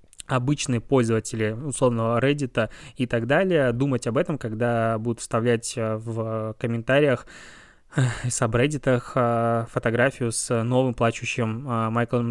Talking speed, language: 105 wpm, Russian